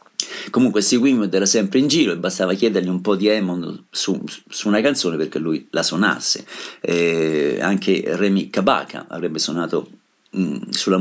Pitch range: 95-110 Hz